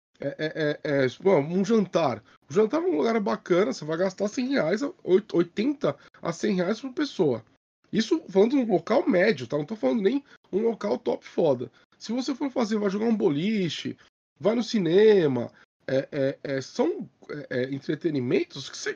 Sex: male